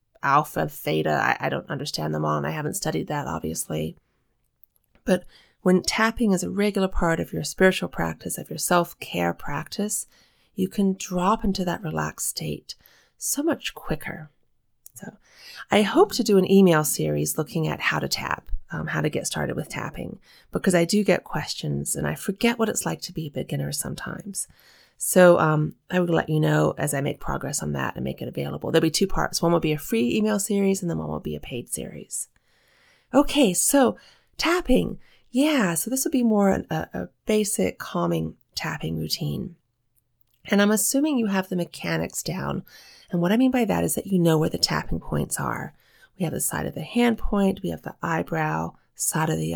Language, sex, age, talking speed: English, female, 30-49, 200 wpm